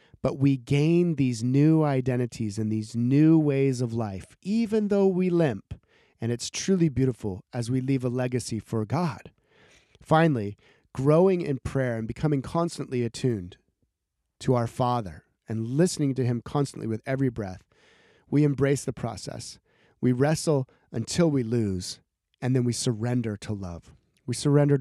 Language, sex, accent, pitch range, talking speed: English, male, American, 120-150 Hz, 150 wpm